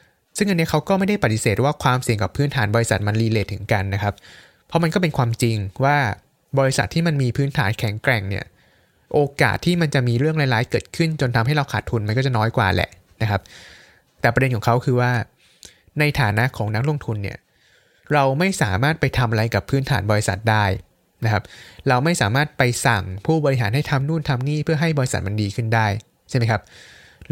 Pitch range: 110-145 Hz